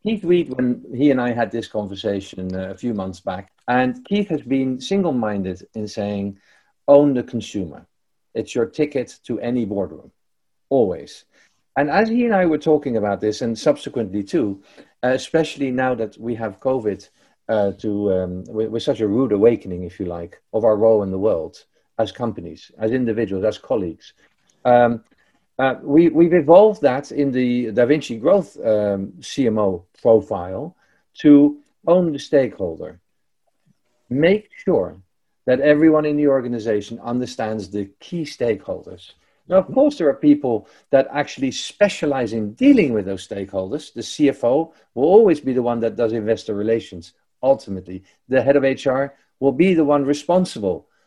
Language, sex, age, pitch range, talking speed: English, male, 50-69, 105-150 Hz, 155 wpm